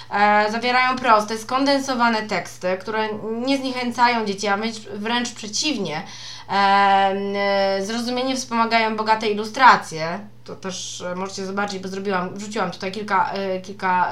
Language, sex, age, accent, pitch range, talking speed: Polish, female, 20-39, native, 185-225 Hz, 105 wpm